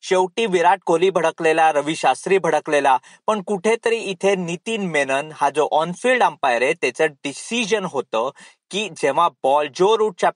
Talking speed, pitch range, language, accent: 150 wpm, 160-220 Hz, Marathi, native